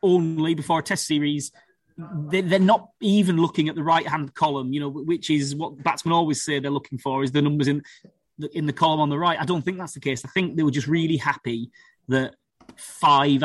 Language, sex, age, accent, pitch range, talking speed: English, male, 30-49, British, 145-180 Hz, 225 wpm